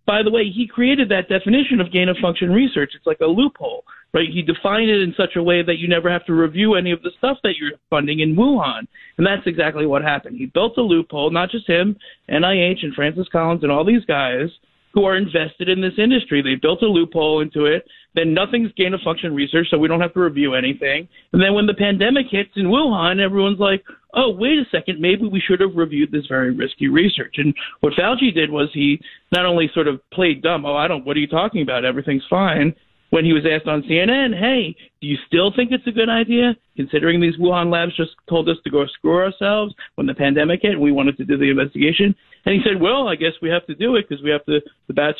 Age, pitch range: 50-69, 150-205 Hz